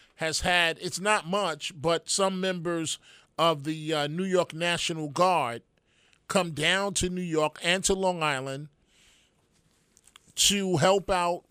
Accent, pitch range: American, 150-185 Hz